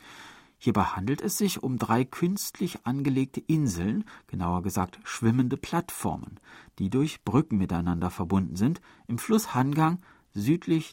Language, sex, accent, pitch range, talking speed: German, male, German, 95-140 Hz, 125 wpm